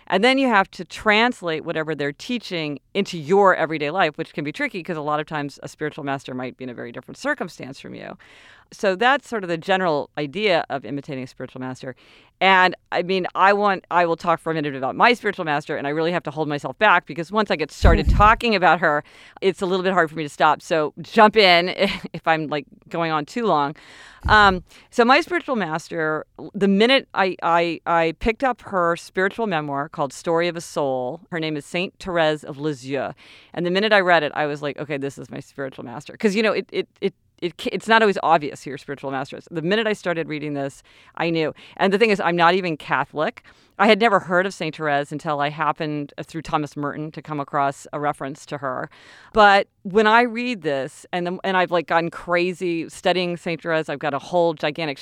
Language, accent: English, American